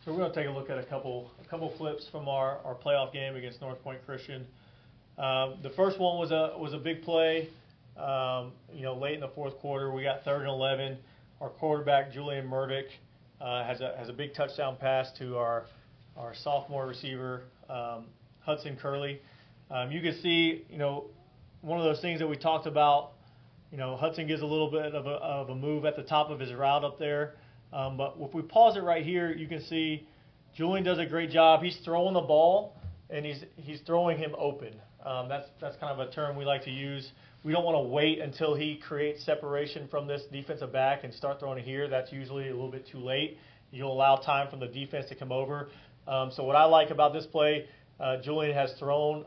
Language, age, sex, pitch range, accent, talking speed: English, 30-49, male, 130-150 Hz, American, 220 wpm